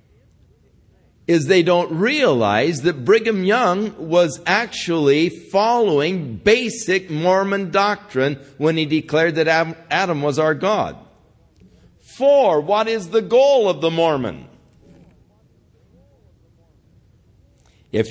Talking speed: 100 wpm